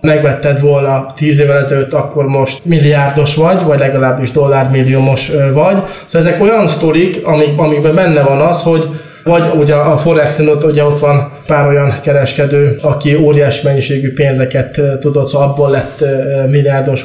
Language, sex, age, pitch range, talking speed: Hungarian, male, 20-39, 135-165 Hz, 150 wpm